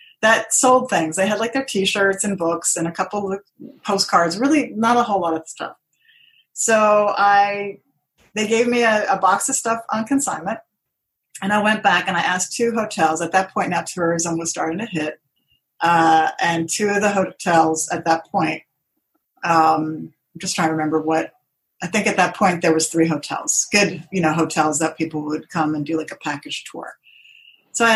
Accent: American